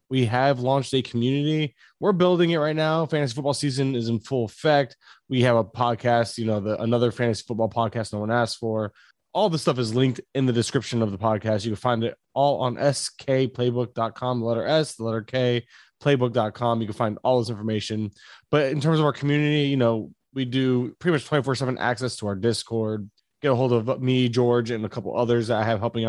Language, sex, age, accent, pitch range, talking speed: English, male, 20-39, American, 115-135 Hz, 215 wpm